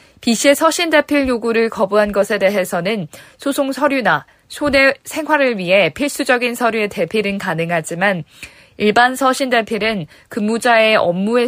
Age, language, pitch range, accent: 20-39, Korean, 190-250 Hz, native